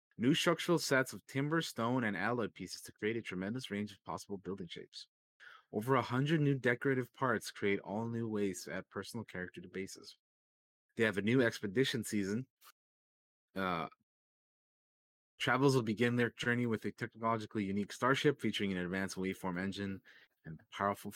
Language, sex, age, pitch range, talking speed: English, male, 30-49, 105-140 Hz, 165 wpm